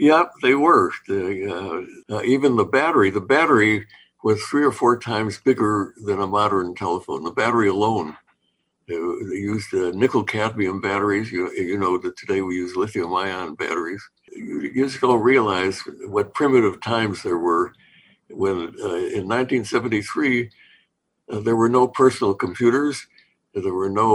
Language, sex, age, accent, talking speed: English, male, 60-79, American, 155 wpm